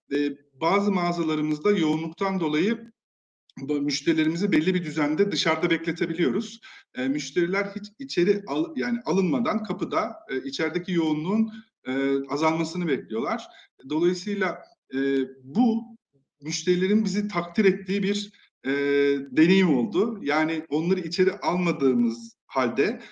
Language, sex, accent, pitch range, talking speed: Turkish, male, native, 145-200 Hz, 105 wpm